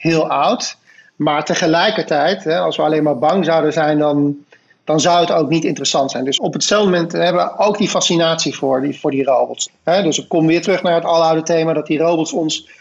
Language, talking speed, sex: Dutch, 220 wpm, male